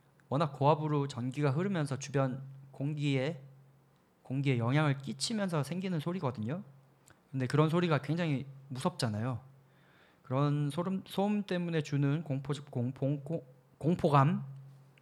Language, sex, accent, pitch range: Korean, male, native, 135-170 Hz